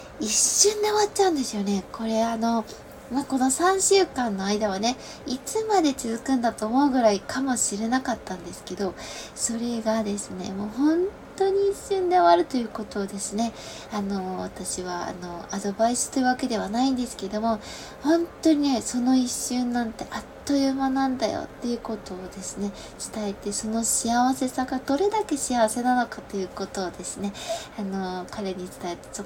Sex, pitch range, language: female, 200-260 Hz, Japanese